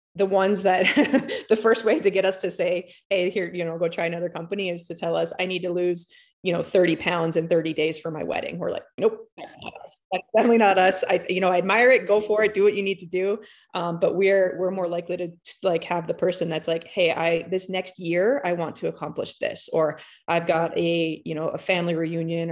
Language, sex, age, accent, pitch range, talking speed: English, female, 30-49, American, 165-195 Hz, 255 wpm